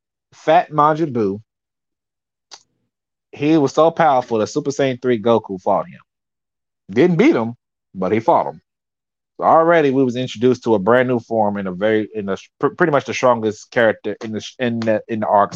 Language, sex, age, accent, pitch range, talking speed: English, male, 30-49, American, 105-140 Hz, 180 wpm